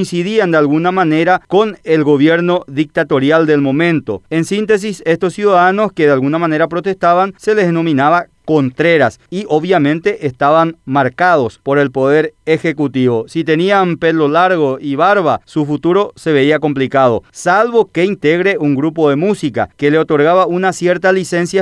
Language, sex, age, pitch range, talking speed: Spanish, male, 40-59, 145-180 Hz, 150 wpm